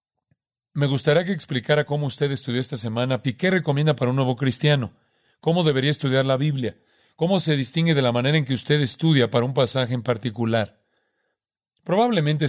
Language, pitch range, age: Spanish, 125-150 Hz, 40-59